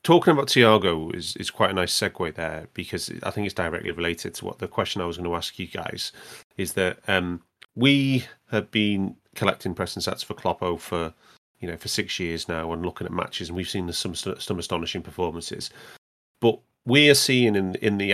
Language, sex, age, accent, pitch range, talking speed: English, male, 30-49, British, 90-115 Hz, 210 wpm